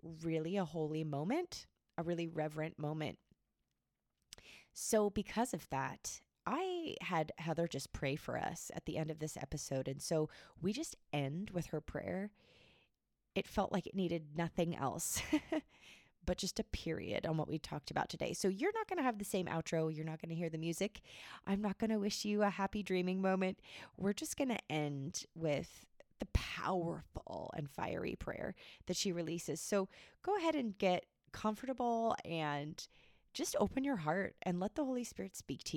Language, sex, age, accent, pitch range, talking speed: English, female, 20-39, American, 155-205 Hz, 180 wpm